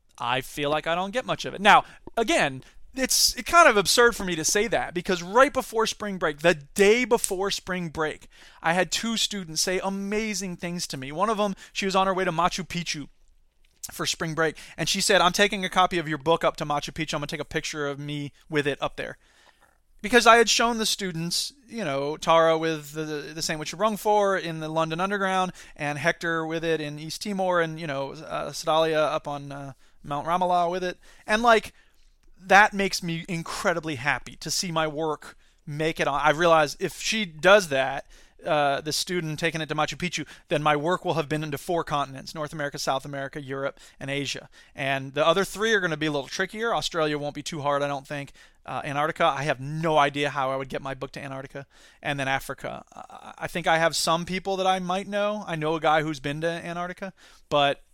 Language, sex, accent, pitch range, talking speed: English, male, American, 145-190 Hz, 225 wpm